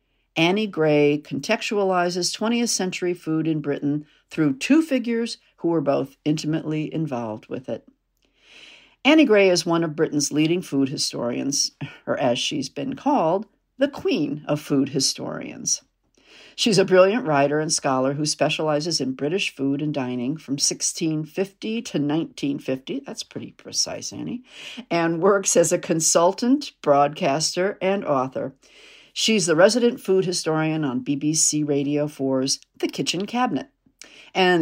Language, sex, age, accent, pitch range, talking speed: English, female, 50-69, American, 145-205 Hz, 135 wpm